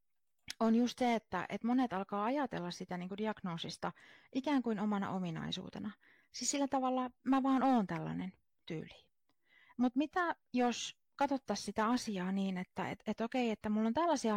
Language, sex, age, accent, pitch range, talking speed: Finnish, female, 30-49, native, 185-240 Hz, 140 wpm